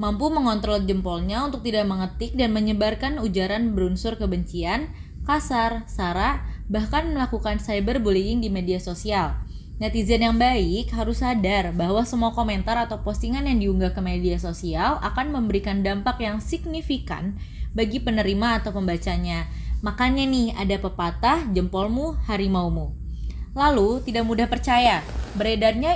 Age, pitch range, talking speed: 20-39, 195-245 Hz, 125 wpm